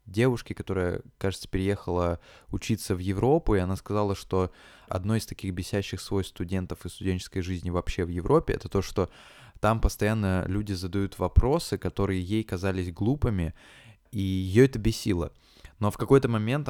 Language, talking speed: Russian, 155 wpm